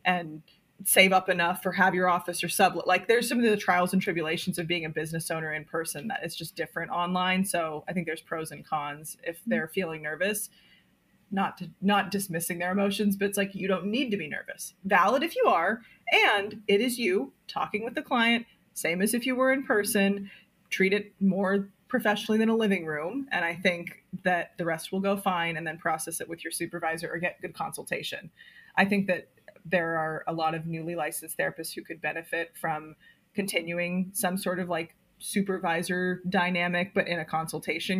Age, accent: 20-39, American